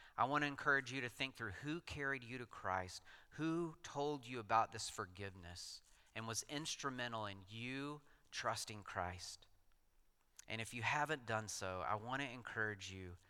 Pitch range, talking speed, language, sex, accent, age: 95-130 Hz, 165 wpm, English, male, American, 40-59